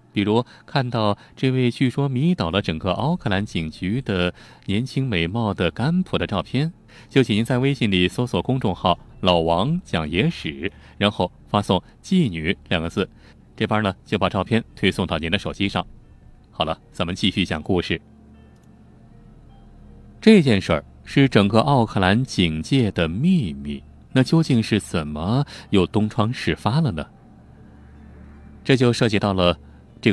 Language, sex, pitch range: Chinese, male, 90-125 Hz